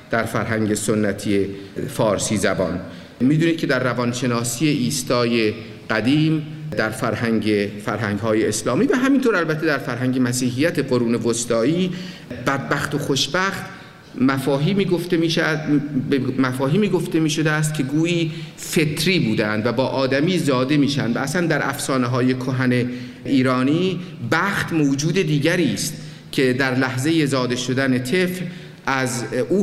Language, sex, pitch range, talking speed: Persian, male, 125-160 Hz, 125 wpm